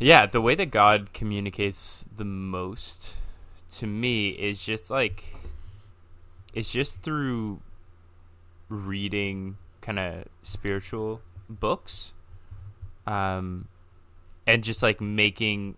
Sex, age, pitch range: male, 20-39, 90-110 Hz